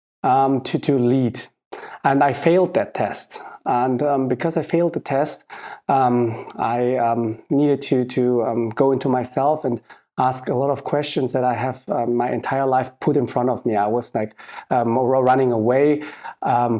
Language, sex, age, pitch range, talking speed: English, male, 30-49, 120-140 Hz, 180 wpm